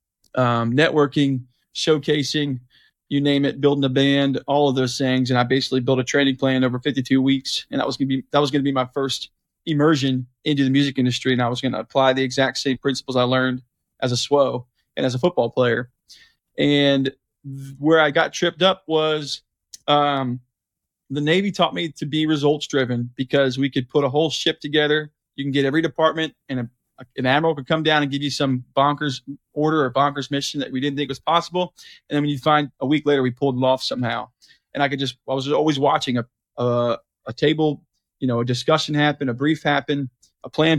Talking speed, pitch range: 215 wpm, 130-150 Hz